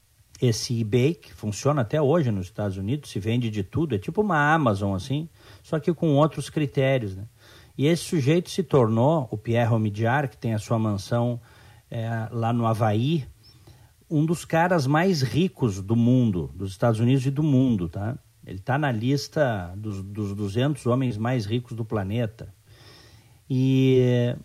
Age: 50-69